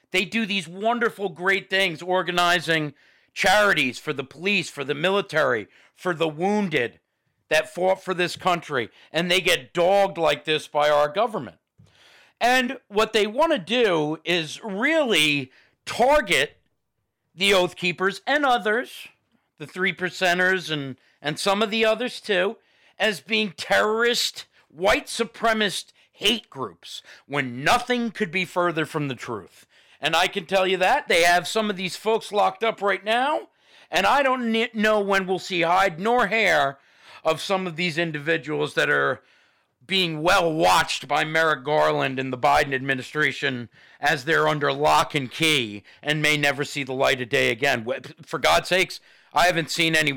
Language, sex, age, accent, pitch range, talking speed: English, male, 50-69, American, 150-210 Hz, 160 wpm